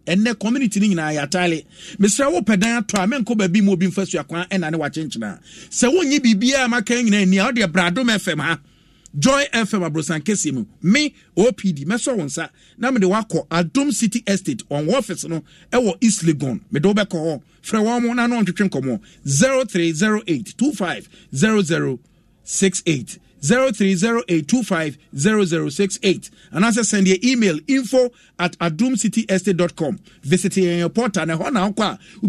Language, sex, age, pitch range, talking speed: English, male, 50-69, 170-220 Hz, 145 wpm